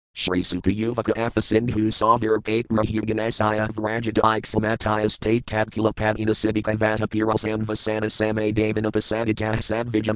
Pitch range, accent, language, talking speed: 105-115 Hz, American, English, 135 wpm